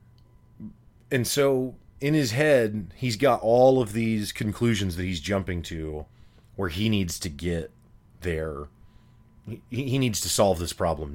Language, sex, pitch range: English, male, 90-120 Hz